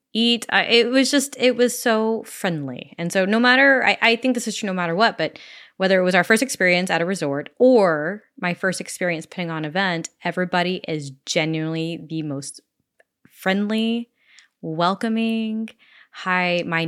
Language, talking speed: English, 170 wpm